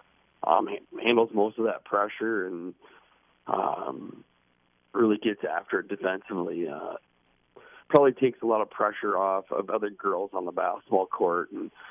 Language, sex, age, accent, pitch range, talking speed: English, male, 40-59, American, 95-130 Hz, 145 wpm